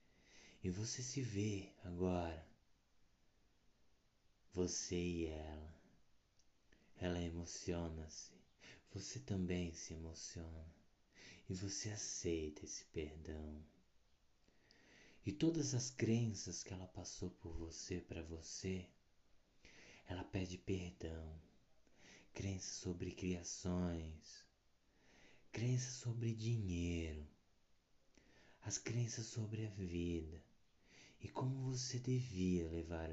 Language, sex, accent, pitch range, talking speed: Portuguese, male, Brazilian, 80-115 Hz, 90 wpm